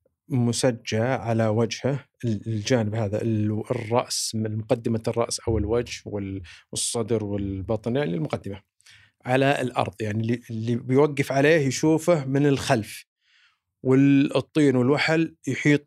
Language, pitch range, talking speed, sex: Arabic, 110-150 Hz, 100 wpm, male